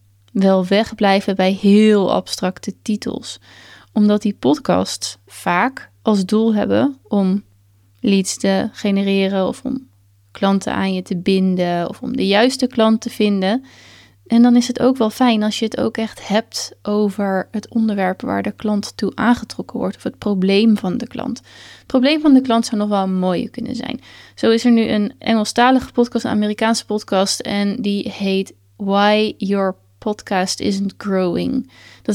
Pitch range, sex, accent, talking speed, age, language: 190-230 Hz, female, Dutch, 170 wpm, 20-39, Dutch